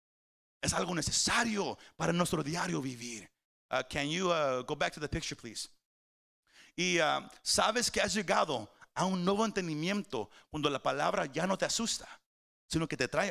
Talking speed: 170 wpm